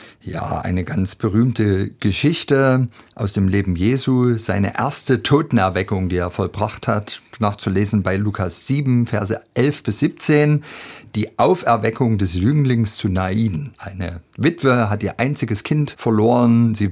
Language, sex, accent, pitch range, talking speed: German, male, German, 95-115 Hz, 135 wpm